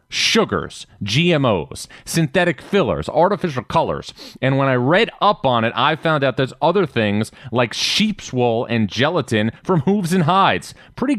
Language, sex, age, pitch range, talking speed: English, male, 30-49, 110-155 Hz, 155 wpm